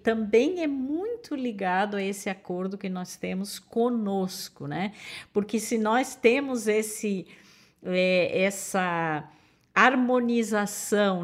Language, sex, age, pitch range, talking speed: Portuguese, female, 50-69, 190-235 Hz, 105 wpm